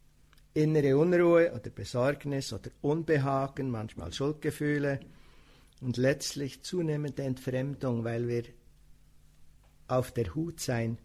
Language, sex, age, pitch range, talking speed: English, male, 60-79, 100-140 Hz, 100 wpm